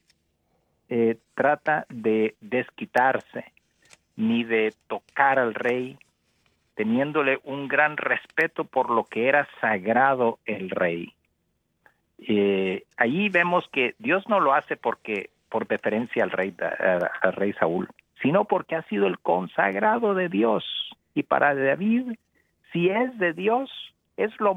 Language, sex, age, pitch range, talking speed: Spanish, male, 50-69, 100-150 Hz, 130 wpm